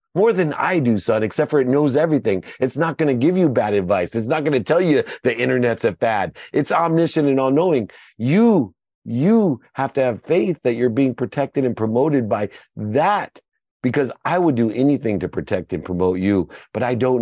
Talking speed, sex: 205 wpm, male